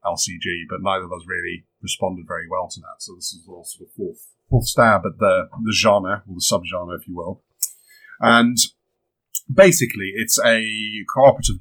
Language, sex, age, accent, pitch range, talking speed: English, male, 30-49, British, 95-120 Hz, 170 wpm